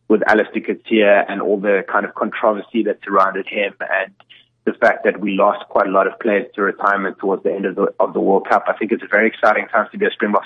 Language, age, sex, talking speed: English, 30-49, male, 260 wpm